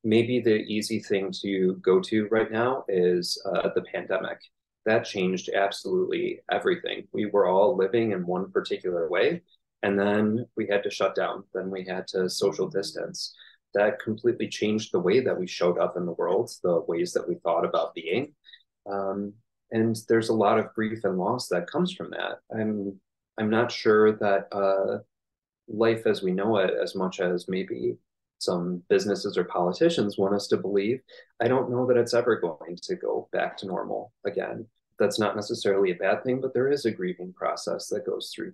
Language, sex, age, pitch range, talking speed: English, male, 30-49, 100-135 Hz, 190 wpm